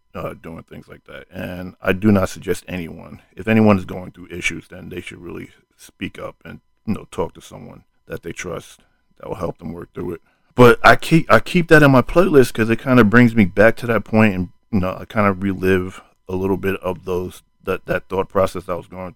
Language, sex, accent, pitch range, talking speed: English, male, American, 90-110 Hz, 240 wpm